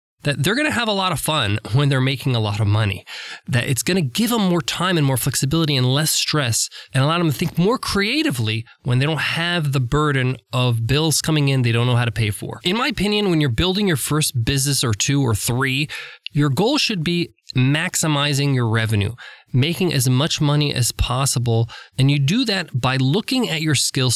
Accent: American